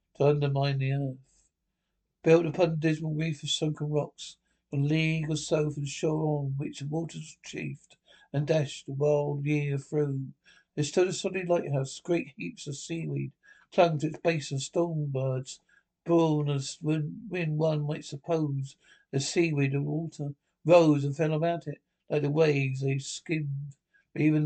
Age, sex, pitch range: 60-79, male, 140-160 Hz